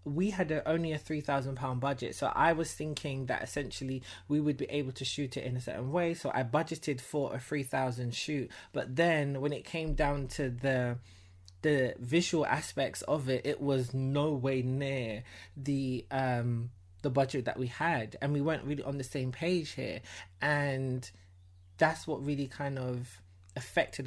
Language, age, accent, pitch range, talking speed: English, 20-39, British, 125-150 Hz, 180 wpm